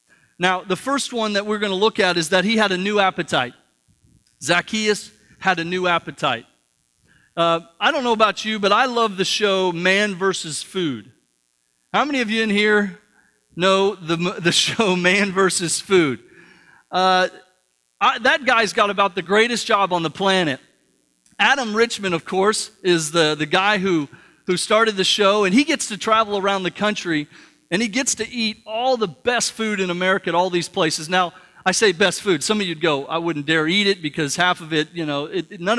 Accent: American